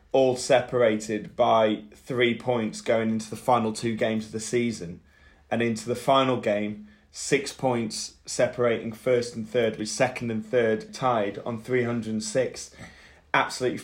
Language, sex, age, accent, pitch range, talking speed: English, male, 20-39, British, 110-125 Hz, 145 wpm